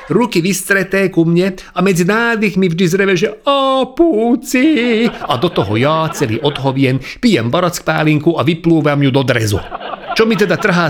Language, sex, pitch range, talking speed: Czech, male, 130-190 Hz, 165 wpm